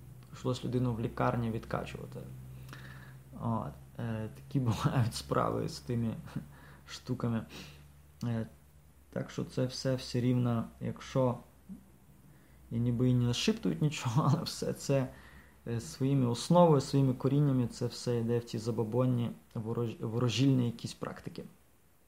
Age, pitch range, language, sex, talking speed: 20-39, 115-140 Hz, English, male, 125 wpm